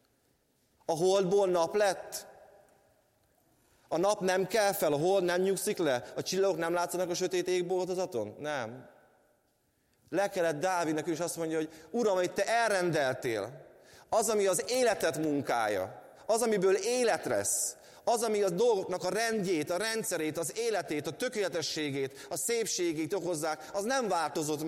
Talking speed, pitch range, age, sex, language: 145 wpm, 150-190 Hz, 30-49, male, Hungarian